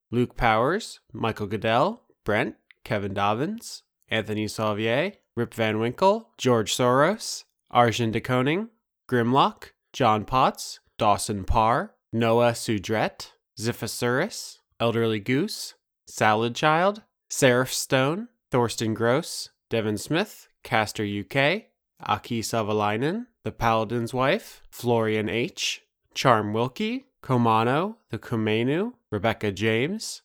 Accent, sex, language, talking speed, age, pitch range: American, male, English, 100 wpm, 20-39, 110-145 Hz